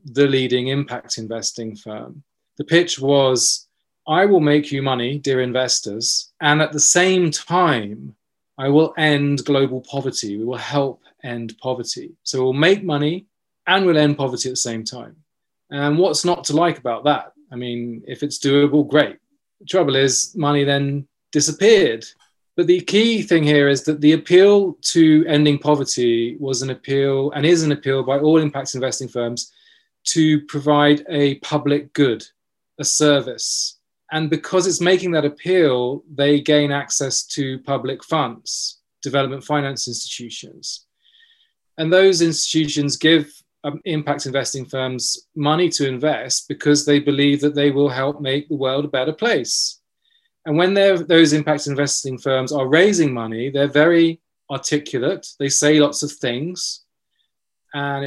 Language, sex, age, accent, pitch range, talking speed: English, male, 30-49, British, 135-160 Hz, 155 wpm